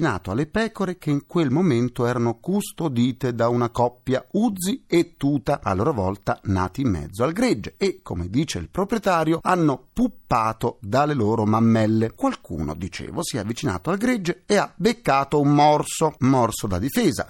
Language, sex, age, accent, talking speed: Italian, male, 40-59, native, 165 wpm